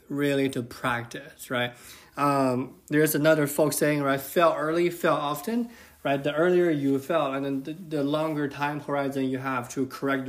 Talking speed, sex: 175 wpm, male